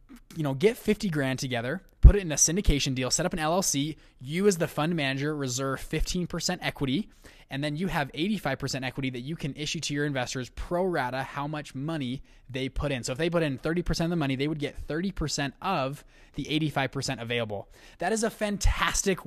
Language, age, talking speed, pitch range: English, 20-39, 205 wpm, 130-170 Hz